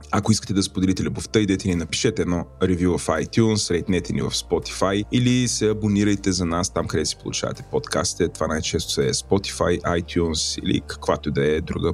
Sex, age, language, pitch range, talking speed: male, 30-49, Bulgarian, 85-105 Hz, 190 wpm